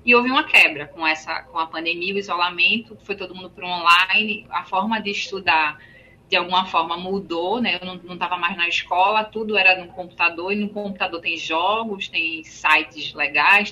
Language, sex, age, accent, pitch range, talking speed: Portuguese, female, 20-39, Brazilian, 170-225 Hz, 200 wpm